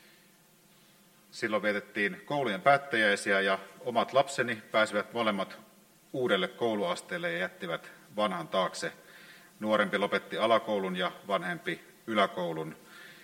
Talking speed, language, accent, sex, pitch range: 95 wpm, Finnish, native, male, 165-175 Hz